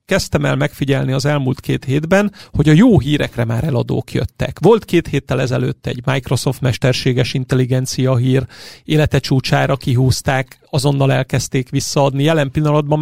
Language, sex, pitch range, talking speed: Hungarian, male, 130-160 Hz, 145 wpm